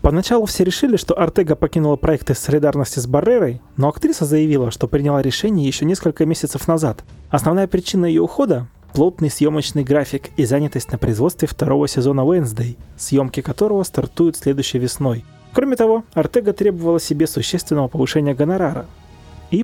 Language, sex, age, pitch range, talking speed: Russian, male, 30-49, 130-180 Hz, 145 wpm